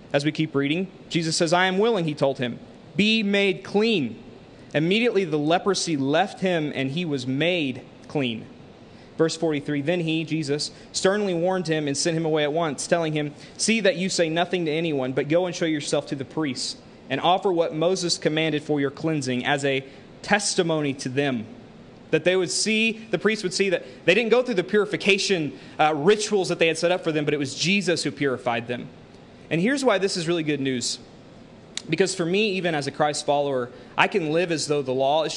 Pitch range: 145-180 Hz